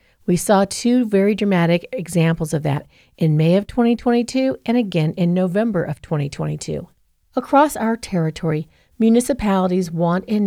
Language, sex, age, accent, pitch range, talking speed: English, female, 40-59, American, 170-220 Hz, 140 wpm